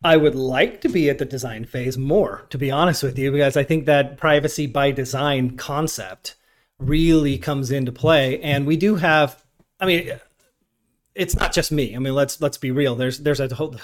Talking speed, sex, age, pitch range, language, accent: 205 wpm, male, 30-49, 130-155 Hz, English, American